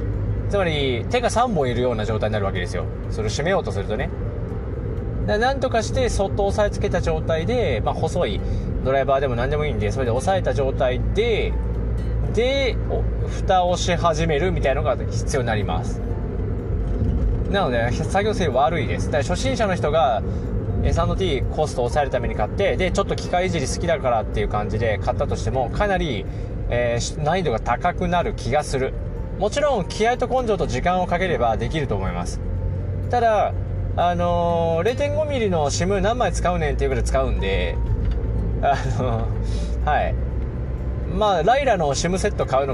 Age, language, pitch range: 20-39, Japanese, 95-125 Hz